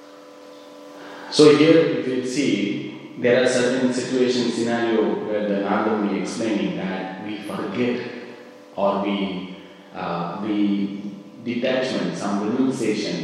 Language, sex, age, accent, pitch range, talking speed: English, male, 30-49, Indian, 100-115 Hz, 115 wpm